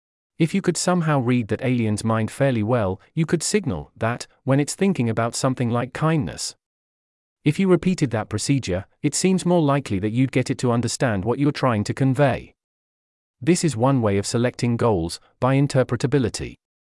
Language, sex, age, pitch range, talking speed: English, male, 30-49, 105-145 Hz, 175 wpm